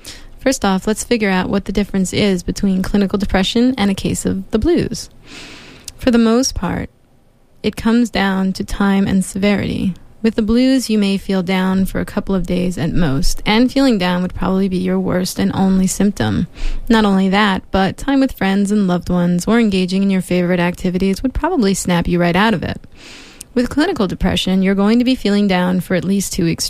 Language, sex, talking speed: English, female, 205 wpm